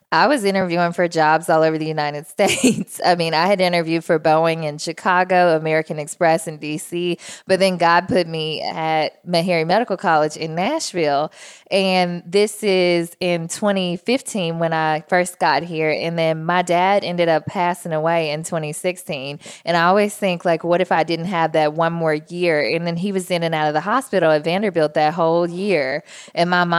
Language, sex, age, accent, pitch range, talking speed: English, female, 20-39, American, 160-185 Hz, 190 wpm